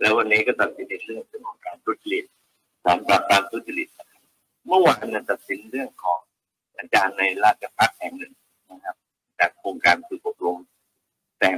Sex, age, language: male, 60-79, Thai